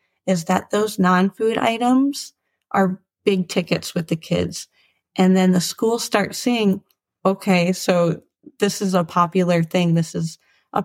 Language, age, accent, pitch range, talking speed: English, 30-49, American, 185-230 Hz, 150 wpm